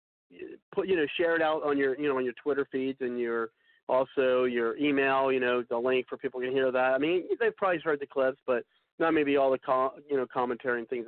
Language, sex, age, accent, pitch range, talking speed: English, male, 40-59, American, 120-150 Hz, 250 wpm